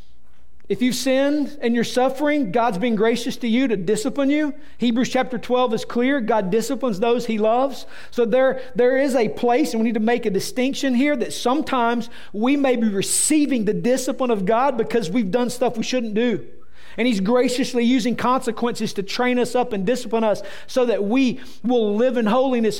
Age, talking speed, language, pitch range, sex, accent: 40-59, 195 wpm, English, 215-260 Hz, male, American